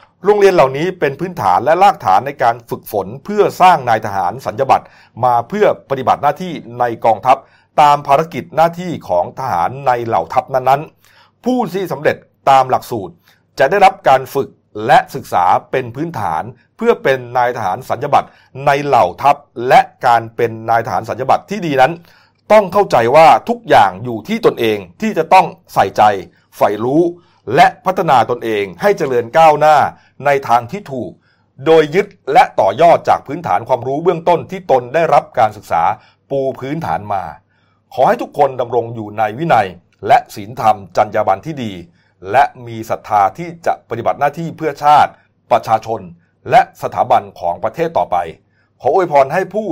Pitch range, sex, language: 115-170 Hz, male, Thai